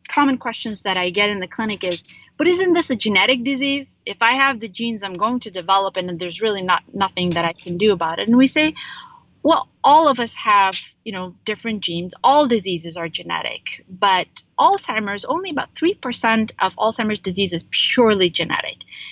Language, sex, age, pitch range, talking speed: English, female, 30-49, 185-245 Hz, 195 wpm